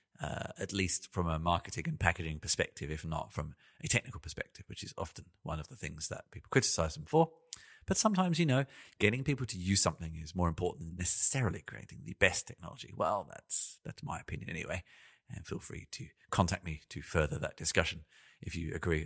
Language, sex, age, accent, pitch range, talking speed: English, male, 40-59, British, 85-120 Hz, 200 wpm